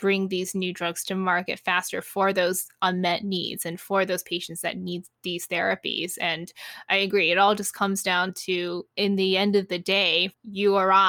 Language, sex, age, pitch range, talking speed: English, female, 20-39, 180-205 Hz, 195 wpm